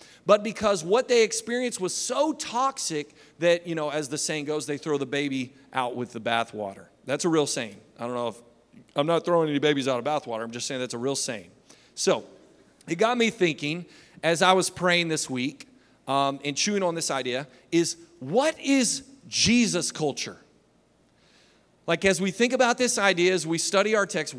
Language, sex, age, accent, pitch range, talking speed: English, male, 40-59, American, 155-220 Hz, 195 wpm